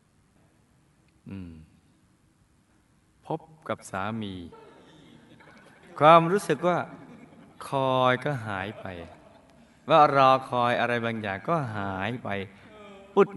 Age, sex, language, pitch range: 20-39, male, Thai, 110-150 Hz